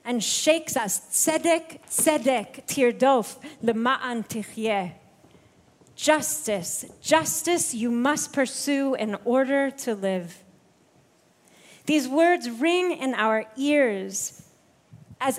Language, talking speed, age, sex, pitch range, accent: English, 95 wpm, 30-49, female, 225-285 Hz, American